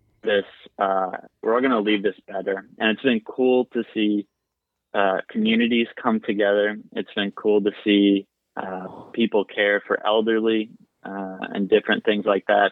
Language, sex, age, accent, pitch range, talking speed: English, male, 20-39, American, 100-110 Hz, 160 wpm